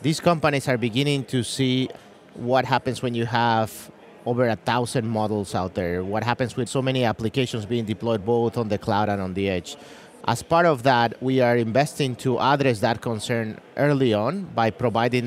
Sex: male